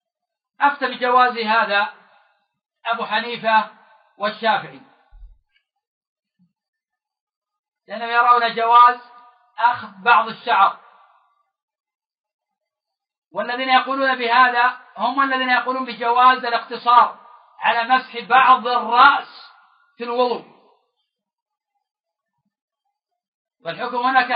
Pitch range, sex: 225-265 Hz, male